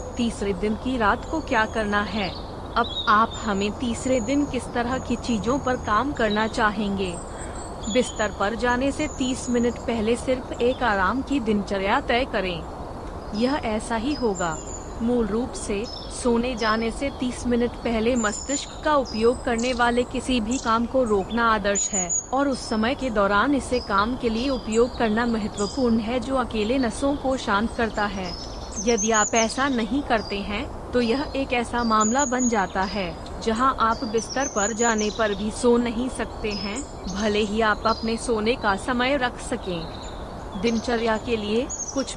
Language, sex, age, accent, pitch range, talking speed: Hindi, female, 30-49, native, 215-250 Hz, 170 wpm